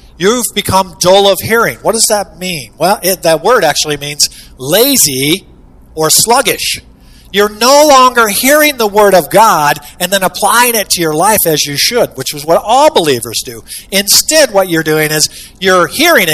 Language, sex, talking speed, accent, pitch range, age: English, male, 175 wpm, American, 145-195 Hz, 50-69